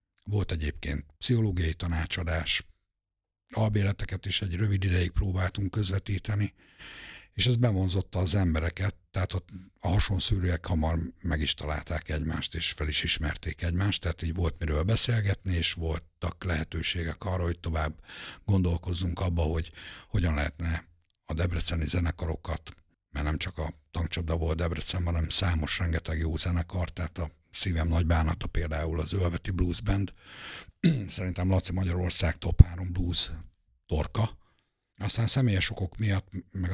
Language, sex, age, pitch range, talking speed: Hungarian, male, 60-79, 85-95 Hz, 135 wpm